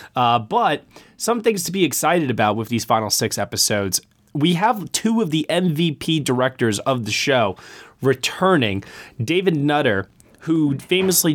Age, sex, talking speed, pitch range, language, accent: 20-39, male, 150 wpm, 110-140 Hz, English, American